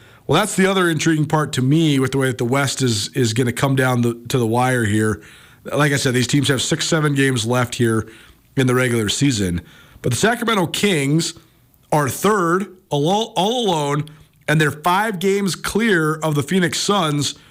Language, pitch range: English, 135-165 Hz